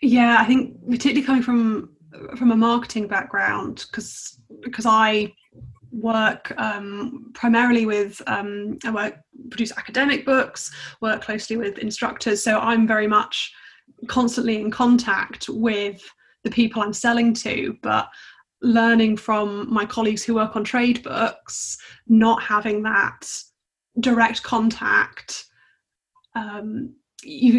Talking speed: 120 wpm